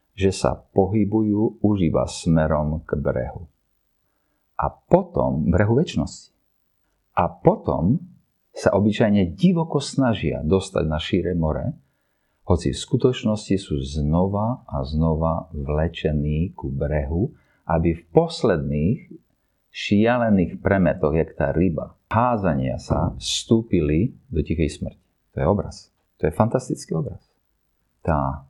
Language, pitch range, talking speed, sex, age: Slovak, 80-120 Hz, 110 wpm, male, 50-69